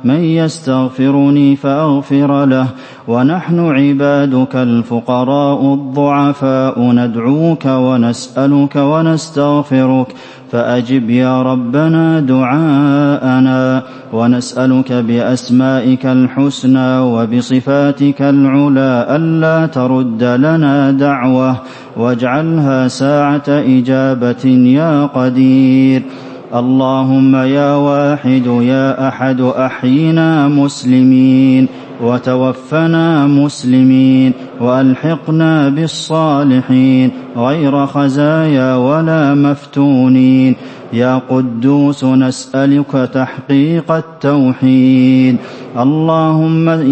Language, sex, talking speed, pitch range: English, male, 65 wpm, 130-145 Hz